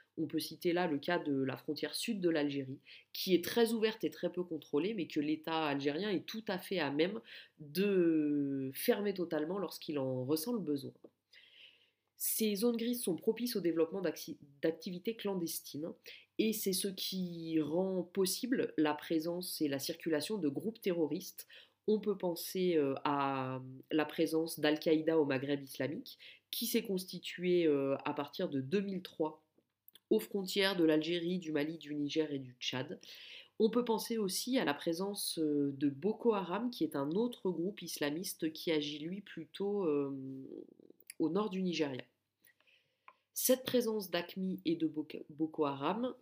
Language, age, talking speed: French, 30-49, 155 wpm